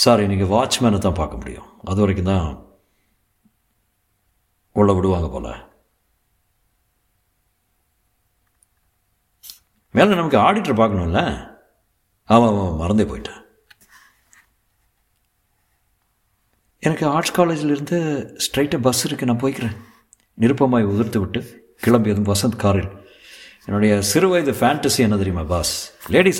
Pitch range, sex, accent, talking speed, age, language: 100-140 Hz, male, native, 95 wpm, 60-79, Tamil